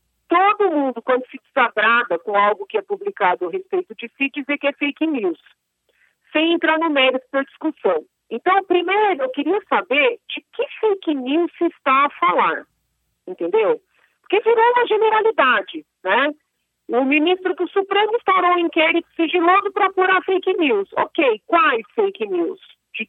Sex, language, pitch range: female, Portuguese, 255-390 Hz